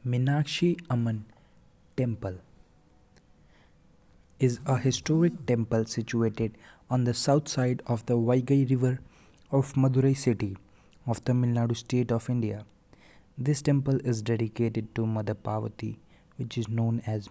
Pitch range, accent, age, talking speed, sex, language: 110-130 Hz, Indian, 20-39, 125 wpm, male, English